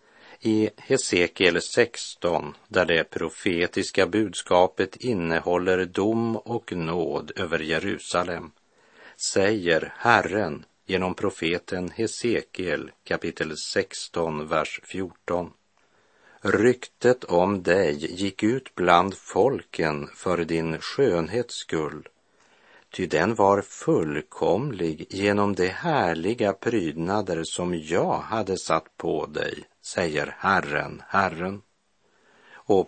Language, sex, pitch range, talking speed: Swedish, male, 85-105 Hz, 90 wpm